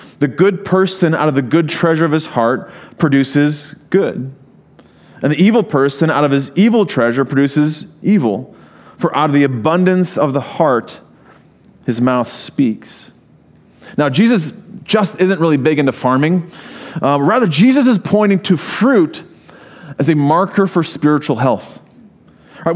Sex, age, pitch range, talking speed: male, 30-49, 140-190 Hz, 150 wpm